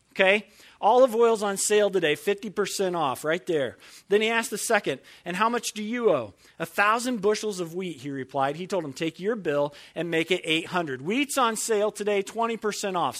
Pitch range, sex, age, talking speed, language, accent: 160-215 Hz, male, 40-59, 200 wpm, English, American